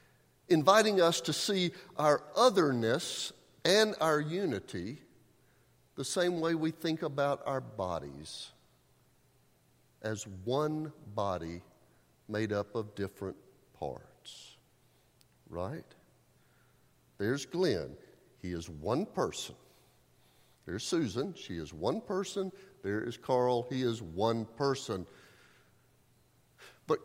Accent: American